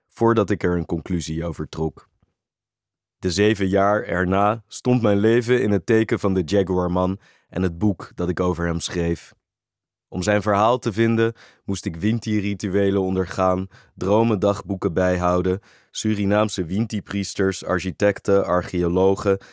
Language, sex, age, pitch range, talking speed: Dutch, male, 20-39, 90-105 Hz, 135 wpm